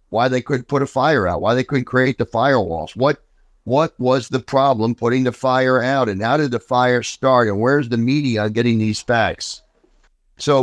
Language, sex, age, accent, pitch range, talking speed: English, male, 60-79, American, 105-130 Hz, 205 wpm